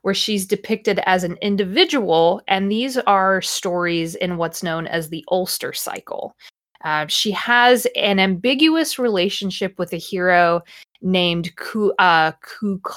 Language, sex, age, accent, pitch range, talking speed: English, female, 20-39, American, 170-215 Hz, 130 wpm